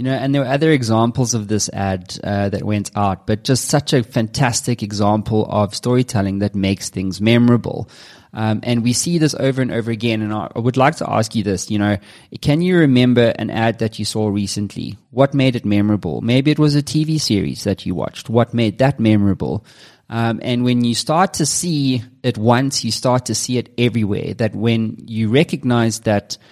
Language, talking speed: English, 205 wpm